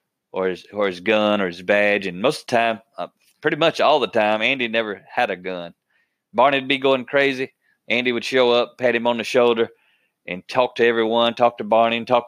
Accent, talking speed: American, 225 wpm